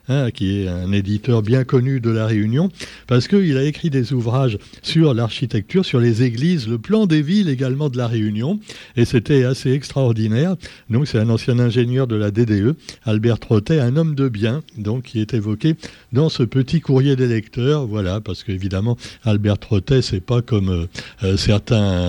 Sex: male